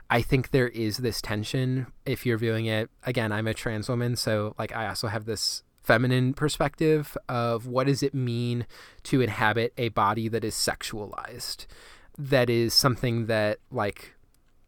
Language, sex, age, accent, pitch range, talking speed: English, male, 20-39, American, 115-140 Hz, 165 wpm